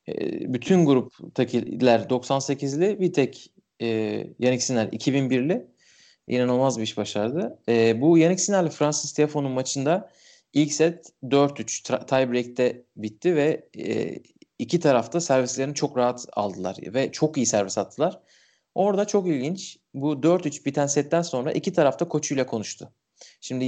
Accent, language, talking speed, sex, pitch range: native, Turkish, 130 wpm, male, 115-150 Hz